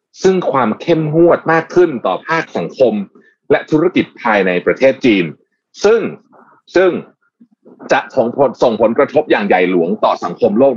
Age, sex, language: 30-49, male, Thai